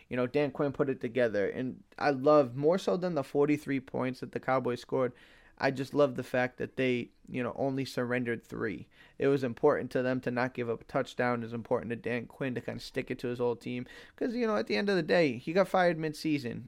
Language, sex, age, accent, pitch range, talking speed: English, male, 20-39, American, 125-145 Hz, 255 wpm